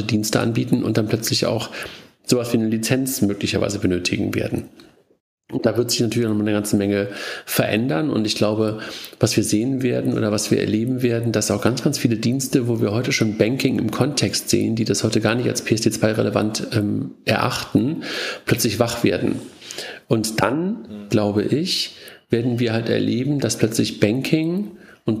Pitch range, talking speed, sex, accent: 105-125 Hz, 180 wpm, male, German